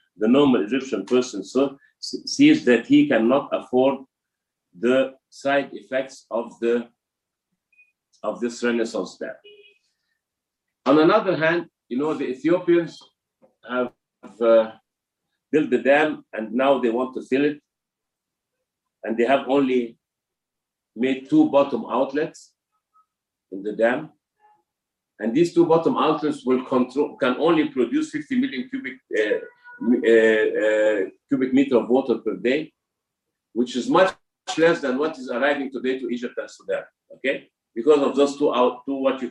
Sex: male